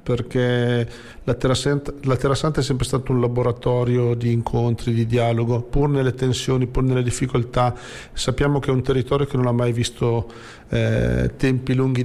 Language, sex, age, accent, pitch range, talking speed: Italian, male, 40-59, native, 115-135 Hz, 160 wpm